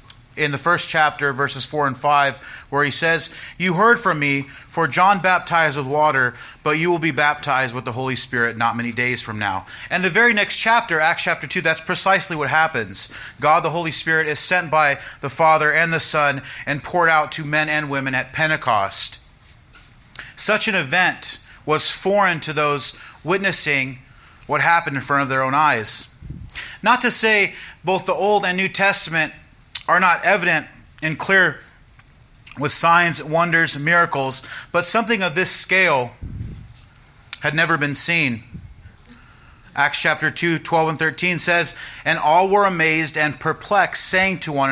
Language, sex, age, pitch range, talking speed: English, male, 30-49, 130-170 Hz, 170 wpm